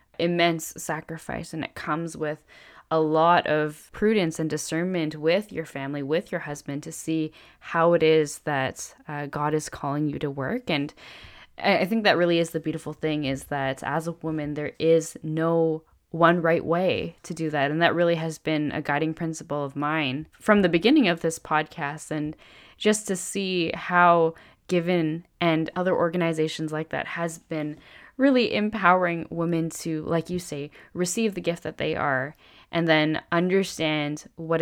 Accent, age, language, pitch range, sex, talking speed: American, 10-29, English, 150-170 Hz, female, 175 wpm